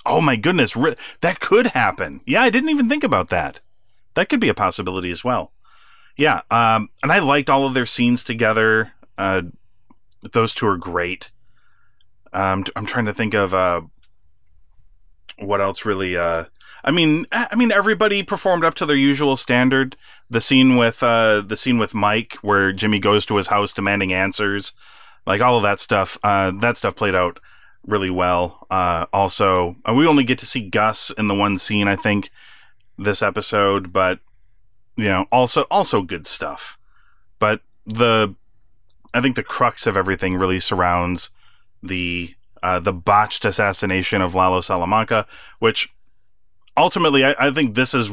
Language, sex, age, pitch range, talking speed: English, male, 30-49, 95-120 Hz, 165 wpm